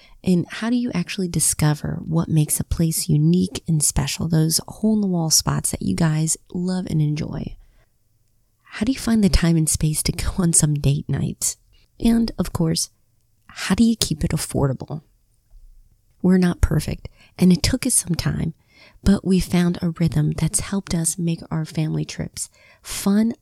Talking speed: 170 wpm